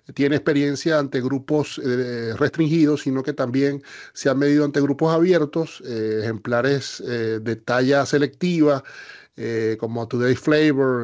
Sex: male